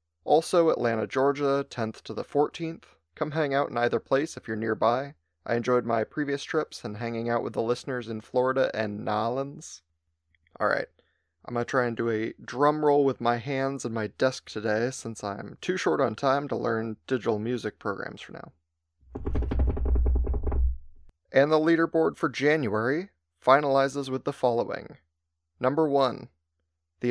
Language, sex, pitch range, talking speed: English, male, 100-135 Hz, 160 wpm